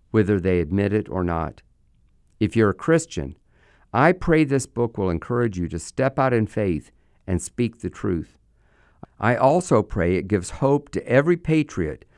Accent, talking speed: American, 170 wpm